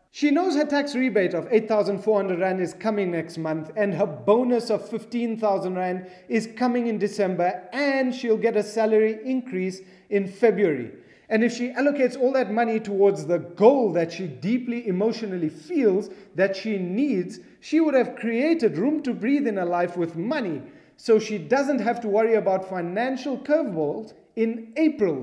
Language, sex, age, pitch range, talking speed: English, male, 30-49, 185-235 Hz, 170 wpm